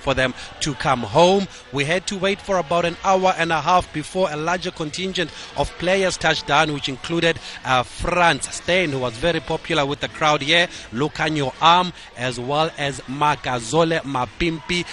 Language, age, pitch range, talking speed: English, 30-49, 140-170 Hz, 185 wpm